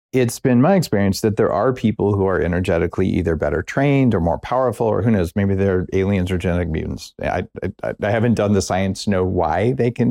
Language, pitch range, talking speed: English, 95-125 Hz, 225 wpm